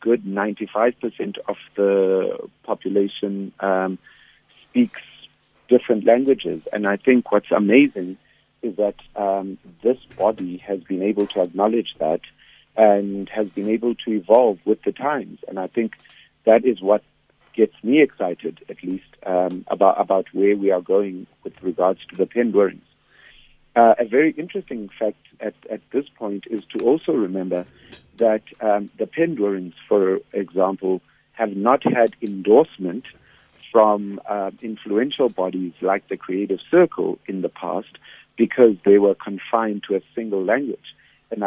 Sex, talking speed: male, 145 wpm